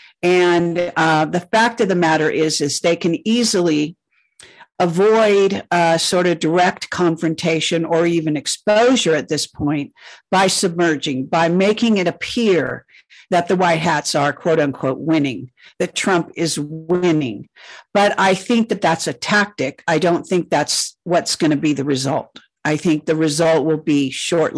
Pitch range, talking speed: 150-185 Hz, 160 wpm